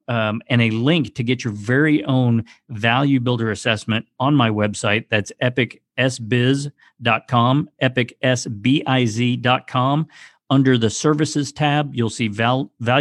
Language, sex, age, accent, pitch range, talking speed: English, male, 50-69, American, 115-140 Hz, 115 wpm